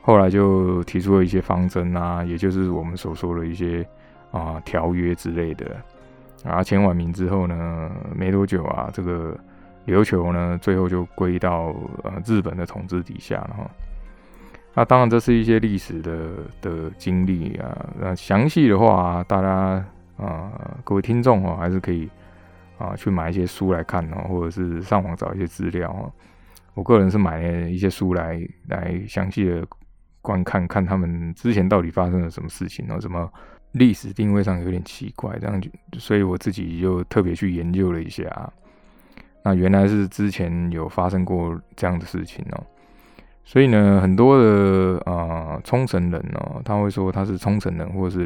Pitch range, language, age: 85-100 Hz, Chinese, 20-39